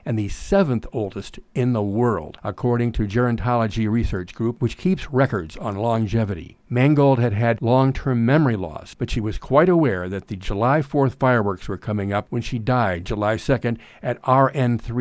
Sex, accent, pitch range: male, American, 105-130 Hz